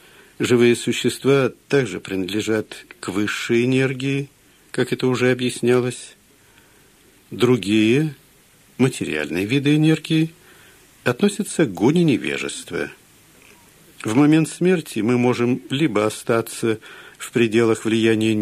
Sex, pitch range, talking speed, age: male, 115-145 Hz, 95 wpm, 50-69